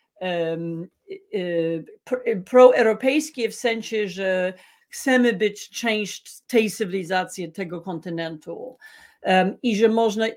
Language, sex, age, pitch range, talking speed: Polish, female, 40-59, 185-245 Hz, 80 wpm